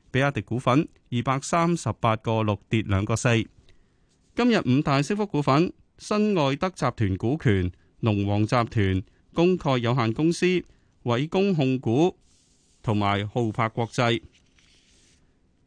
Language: Chinese